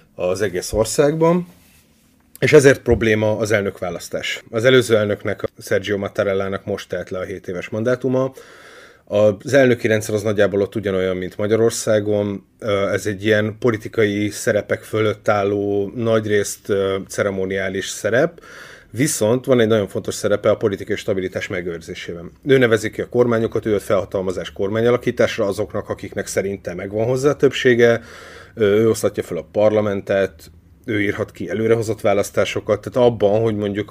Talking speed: 140 wpm